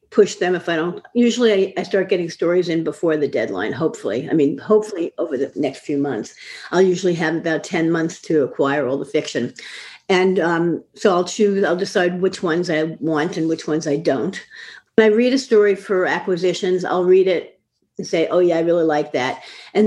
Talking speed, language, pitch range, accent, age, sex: 210 wpm, English, 160-200 Hz, American, 50-69, female